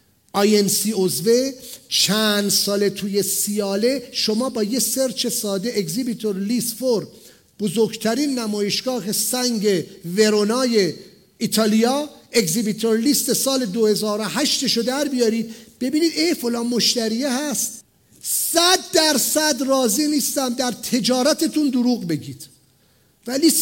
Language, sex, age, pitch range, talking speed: English, male, 50-69, 220-295 Hz, 105 wpm